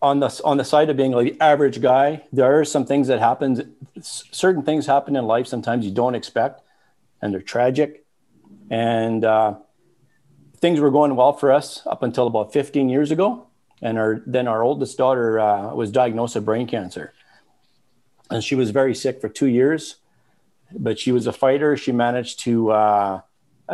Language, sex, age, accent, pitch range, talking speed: English, male, 40-59, American, 115-140 Hz, 185 wpm